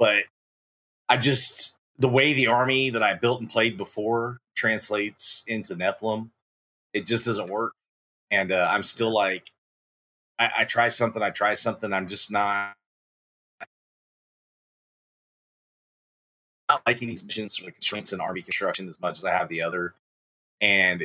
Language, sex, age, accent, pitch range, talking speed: English, male, 30-49, American, 90-115 Hz, 150 wpm